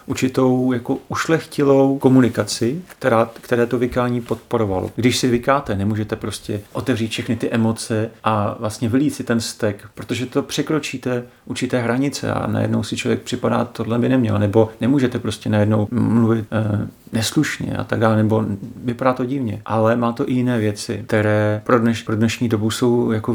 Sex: male